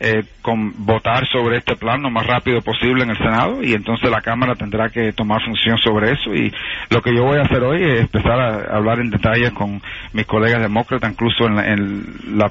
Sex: male